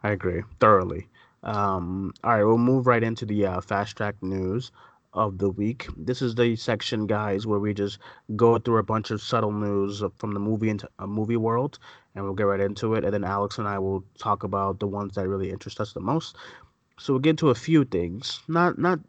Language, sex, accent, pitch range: English, male, American, 100-120 Hz